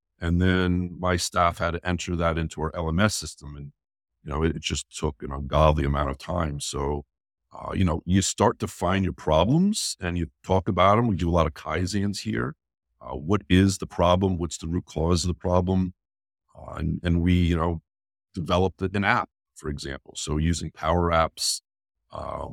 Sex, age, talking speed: male, 50-69, 195 wpm